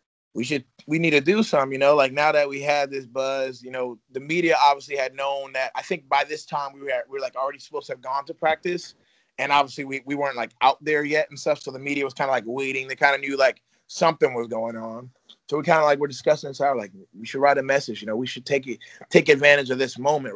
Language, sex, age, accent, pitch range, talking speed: English, male, 30-49, American, 120-145 Hz, 285 wpm